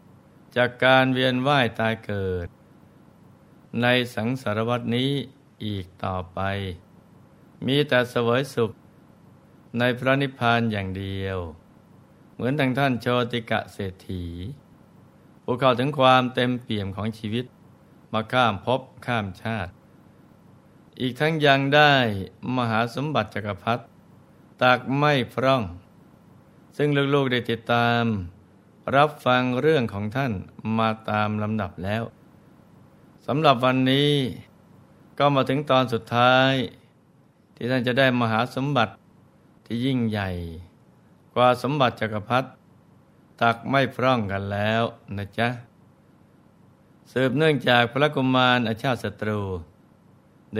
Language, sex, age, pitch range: Thai, male, 60-79, 105-130 Hz